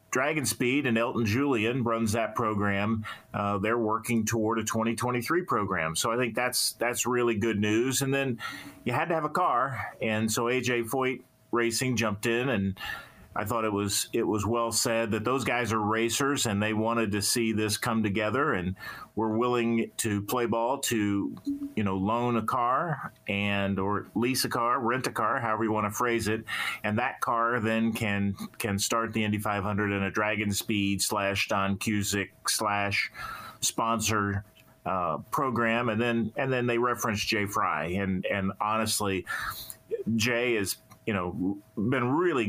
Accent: American